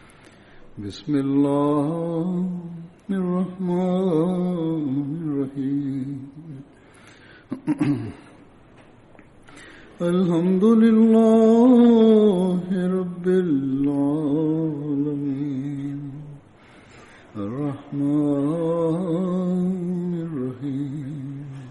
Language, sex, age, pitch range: Indonesian, male, 60-79, 140-180 Hz